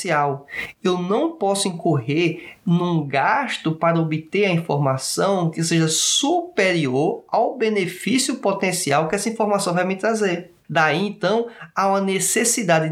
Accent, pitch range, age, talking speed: Brazilian, 160-205 Hz, 20-39, 125 wpm